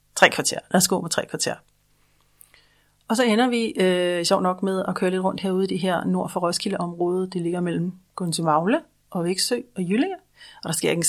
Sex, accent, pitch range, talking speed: female, native, 175-225 Hz, 215 wpm